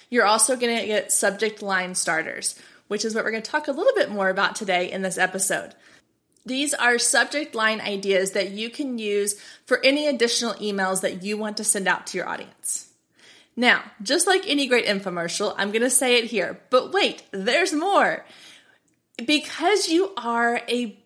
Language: English